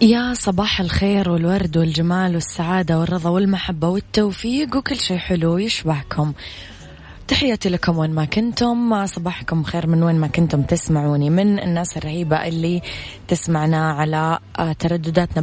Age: 20-39